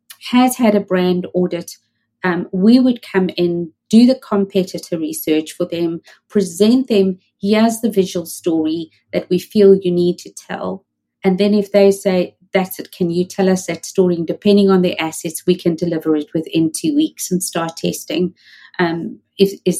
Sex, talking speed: female, 180 wpm